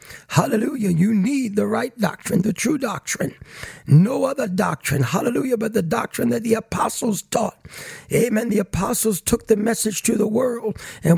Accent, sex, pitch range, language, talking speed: American, male, 205-260 Hz, English, 160 wpm